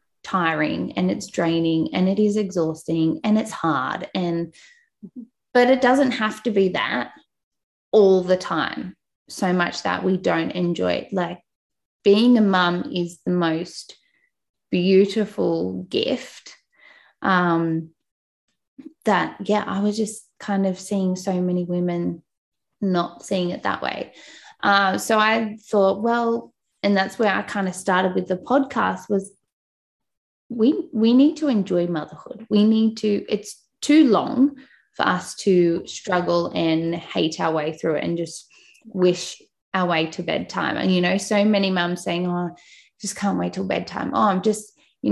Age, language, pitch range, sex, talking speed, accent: 20-39, English, 180-220 Hz, female, 155 wpm, Australian